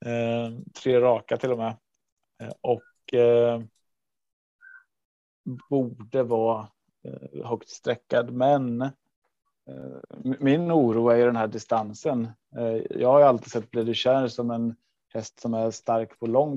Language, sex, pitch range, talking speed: Swedish, male, 110-125 Hz, 140 wpm